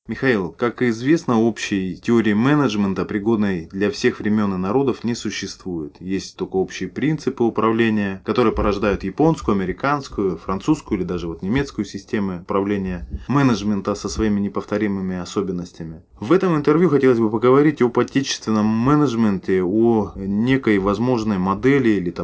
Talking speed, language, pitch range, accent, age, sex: 130 wpm, Russian, 90-120 Hz, native, 20-39, male